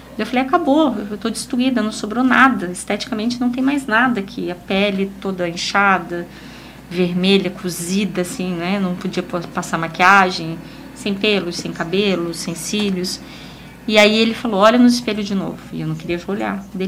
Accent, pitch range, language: Brazilian, 180-220 Hz, Portuguese